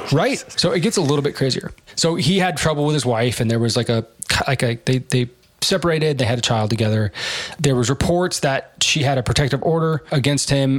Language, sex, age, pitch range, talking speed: English, male, 20-39, 115-140 Hz, 230 wpm